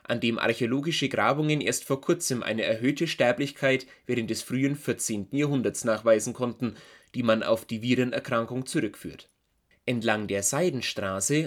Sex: male